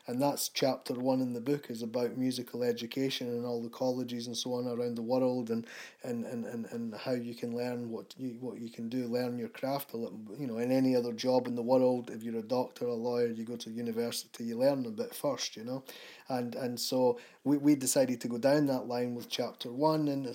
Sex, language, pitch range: male, English, 120-150 Hz